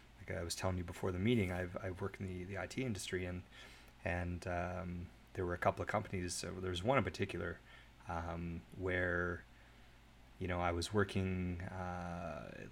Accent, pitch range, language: American, 90-105 Hz, English